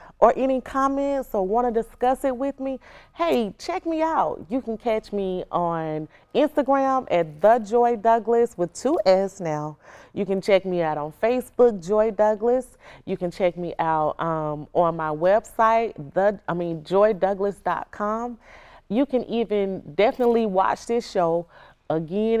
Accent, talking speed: American, 150 wpm